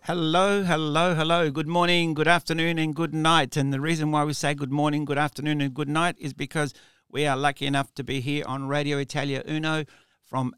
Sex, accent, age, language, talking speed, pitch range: male, Australian, 60-79, English, 210 wpm, 130-155 Hz